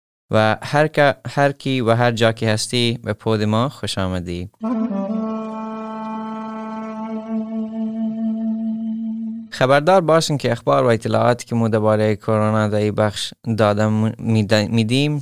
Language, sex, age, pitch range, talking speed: Persian, male, 20-39, 105-140 Hz, 110 wpm